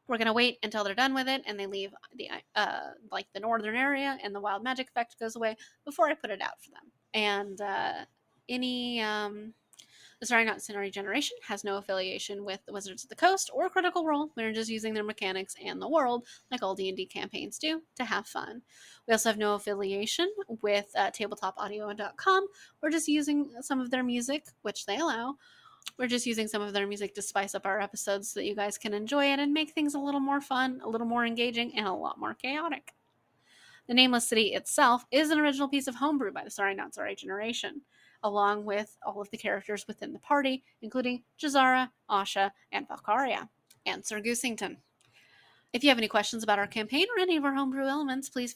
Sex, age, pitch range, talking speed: female, 20-39, 205-280 Hz, 210 wpm